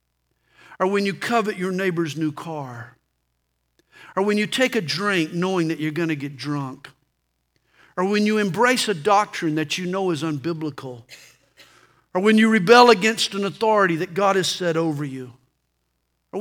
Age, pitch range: 50-69, 140-220 Hz